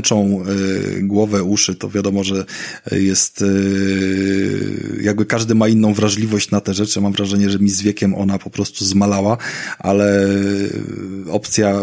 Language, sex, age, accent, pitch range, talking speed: Polish, male, 20-39, native, 95-110 Hz, 130 wpm